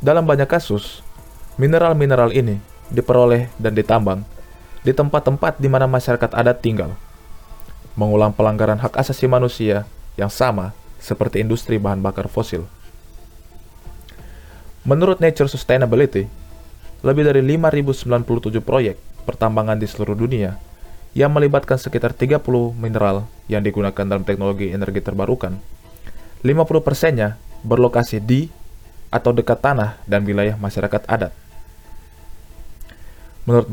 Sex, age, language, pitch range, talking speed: male, 20-39, English, 100-125 Hz, 110 wpm